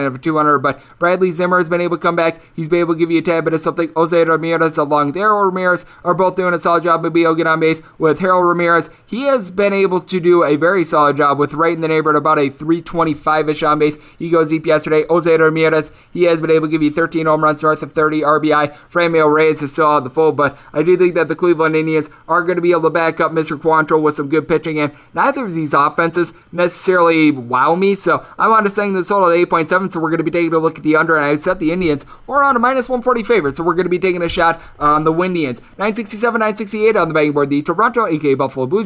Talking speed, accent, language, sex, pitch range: 265 wpm, American, English, male, 155-185 Hz